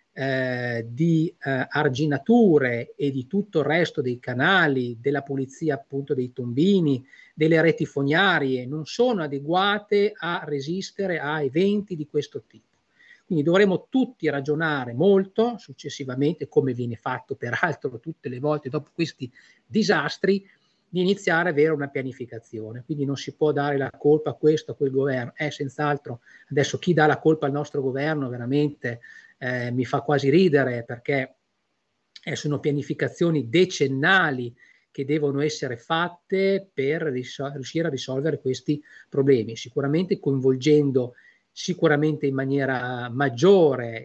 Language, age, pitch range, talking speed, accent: Italian, 40-59, 135-180 Hz, 135 wpm, native